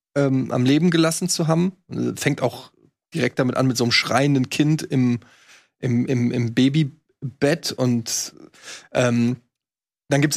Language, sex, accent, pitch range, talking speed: German, male, German, 130-160 Hz, 150 wpm